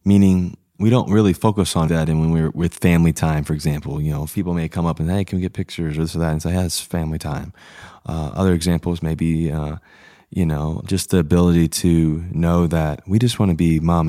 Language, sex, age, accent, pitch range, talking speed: English, male, 20-39, American, 80-90 Hz, 240 wpm